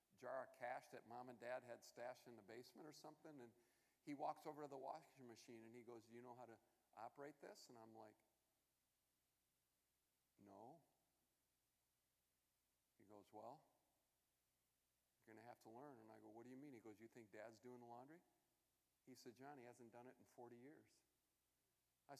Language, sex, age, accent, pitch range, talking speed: English, male, 50-69, American, 120-150 Hz, 190 wpm